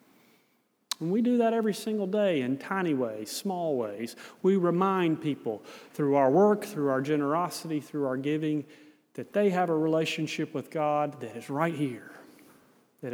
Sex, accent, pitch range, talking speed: male, American, 145-195 Hz, 165 wpm